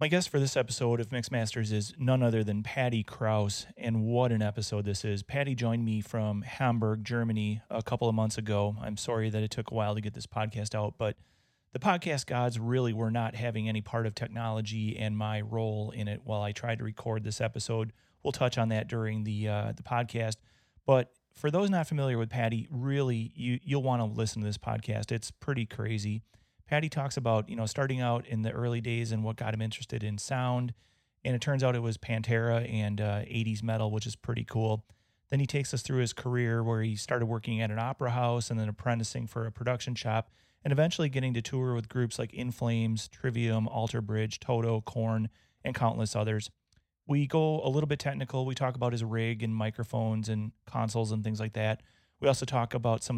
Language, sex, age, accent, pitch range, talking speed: English, male, 30-49, American, 110-125 Hz, 215 wpm